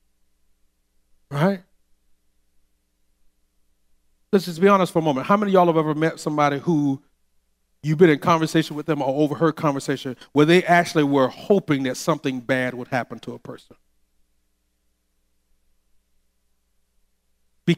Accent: American